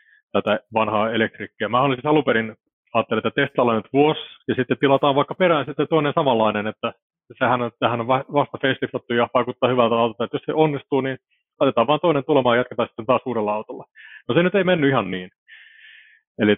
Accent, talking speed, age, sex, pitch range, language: native, 190 wpm, 30-49, male, 110-135 Hz, Finnish